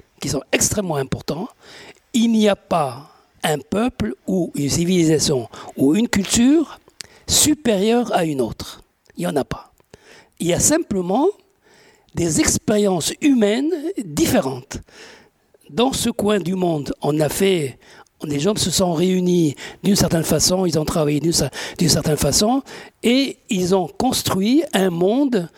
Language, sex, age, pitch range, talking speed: French, male, 60-79, 165-235 Hz, 145 wpm